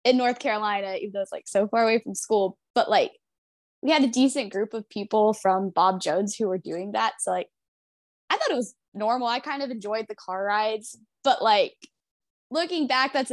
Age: 10-29